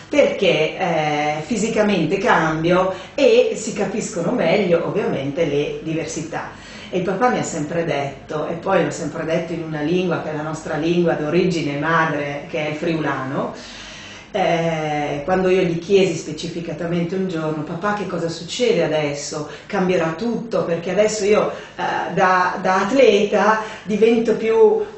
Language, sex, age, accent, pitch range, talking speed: Italian, female, 30-49, native, 160-215 Hz, 145 wpm